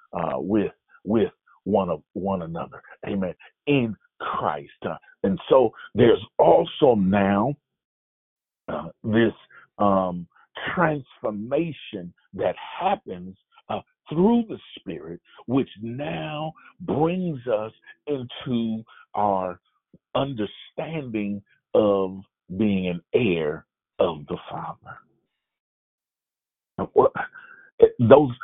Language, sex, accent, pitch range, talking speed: English, male, American, 100-150 Hz, 85 wpm